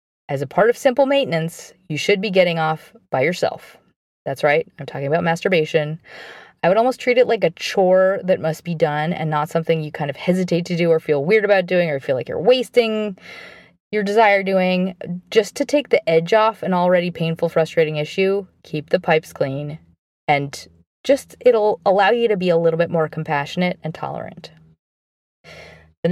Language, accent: English, American